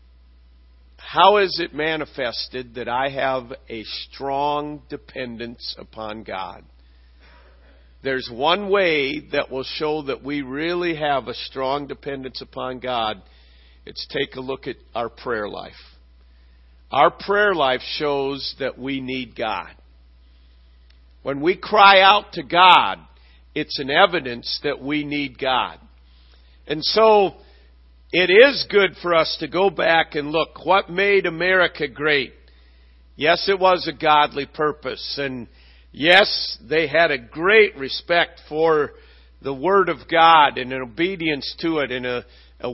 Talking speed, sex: 140 wpm, male